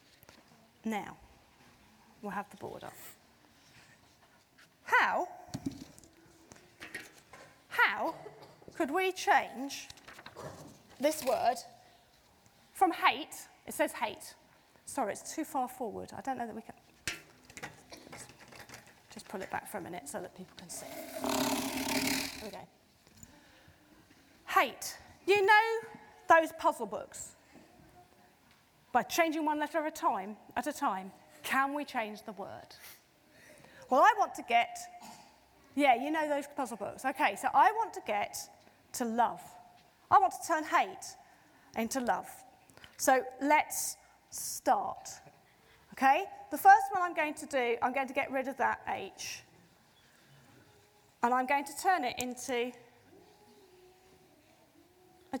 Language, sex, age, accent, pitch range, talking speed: English, female, 30-49, British, 250-365 Hz, 125 wpm